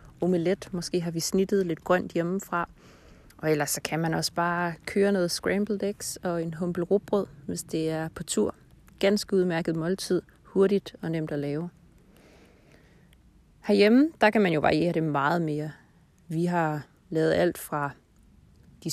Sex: female